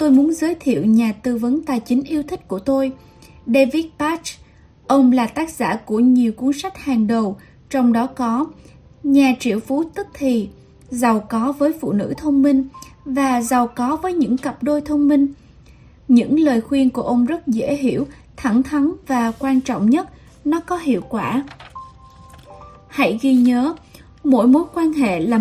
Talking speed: 175 wpm